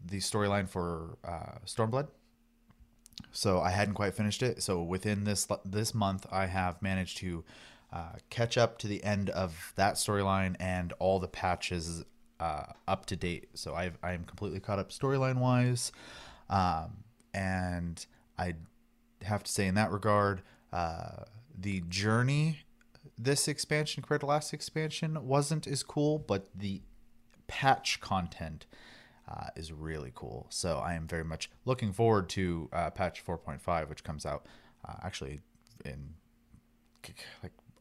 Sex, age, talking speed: male, 30-49, 145 wpm